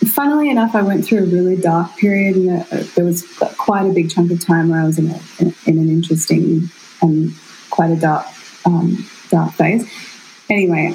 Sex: female